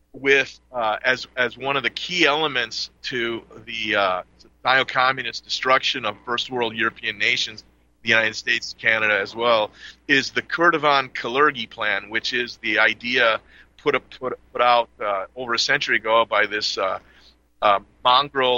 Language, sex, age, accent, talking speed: English, male, 40-59, American, 160 wpm